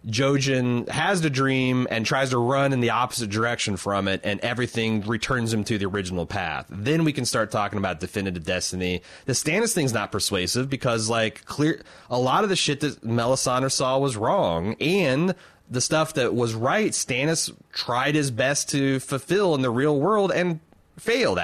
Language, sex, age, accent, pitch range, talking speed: English, male, 30-49, American, 100-135 Hz, 185 wpm